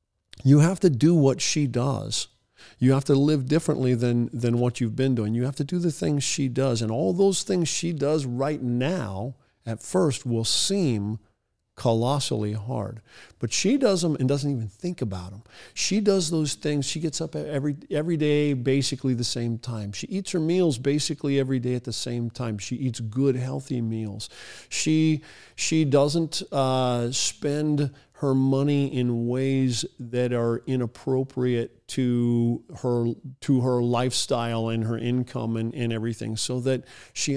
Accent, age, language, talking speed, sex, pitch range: American, 50-69, English, 170 wpm, male, 115-140 Hz